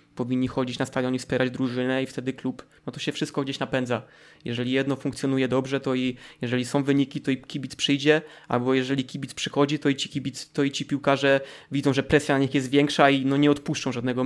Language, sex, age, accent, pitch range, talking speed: Polish, male, 20-39, native, 135-150 Hz, 210 wpm